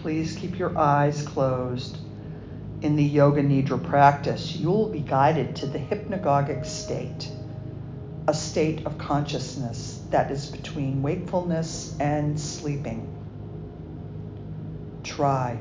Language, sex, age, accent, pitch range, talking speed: English, female, 50-69, American, 130-155 Hz, 110 wpm